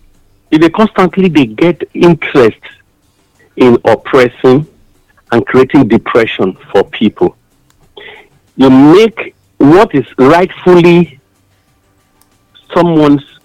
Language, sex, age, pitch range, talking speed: English, male, 50-69, 105-170 Hz, 85 wpm